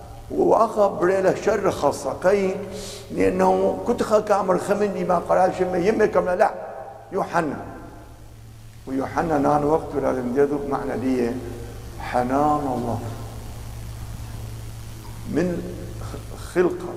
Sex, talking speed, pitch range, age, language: male, 90 wpm, 110-170 Hz, 60-79, English